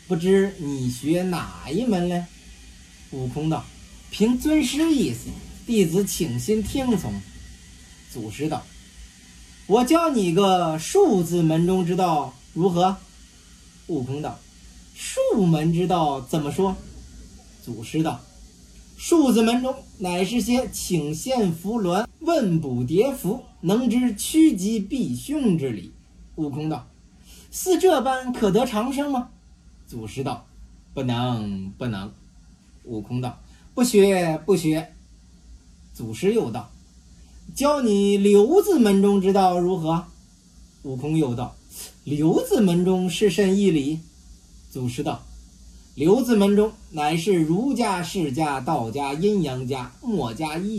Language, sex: Chinese, male